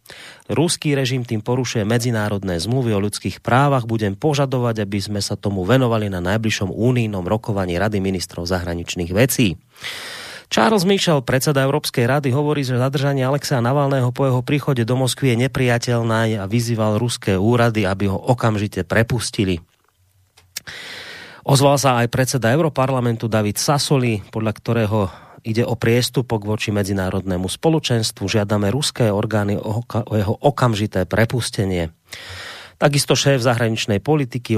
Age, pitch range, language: 30-49, 105-130 Hz, Slovak